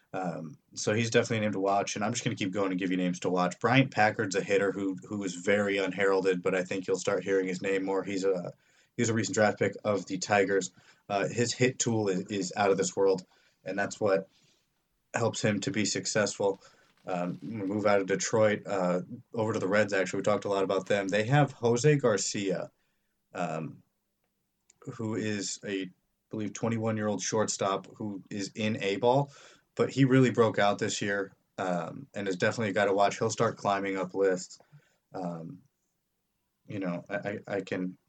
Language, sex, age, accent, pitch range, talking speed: English, male, 30-49, American, 95-115 Hz, 200 wpm